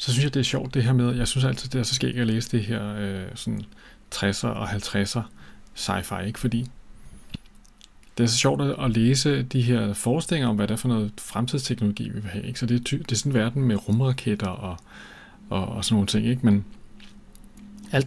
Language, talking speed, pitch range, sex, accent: Danish, 225 wpm, 105-125 Hz, male, native